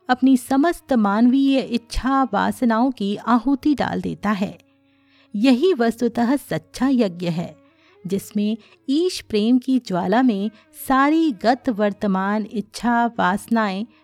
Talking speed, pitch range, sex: 110 wpm, 210-275 Hz, female